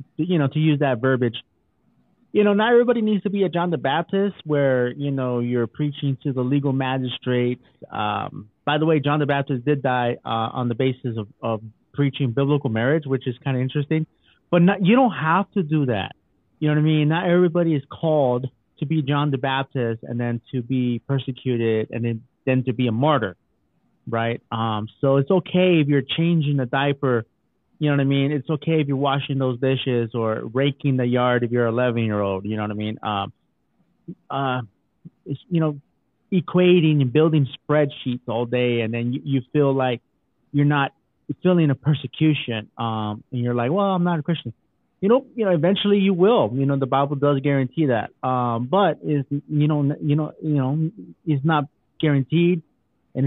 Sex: male